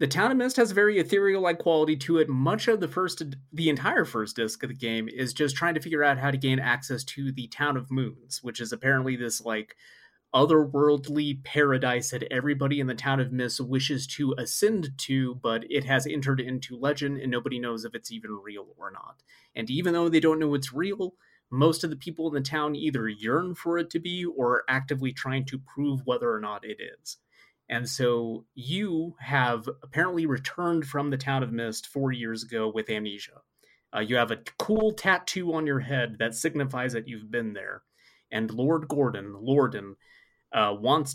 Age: 30-49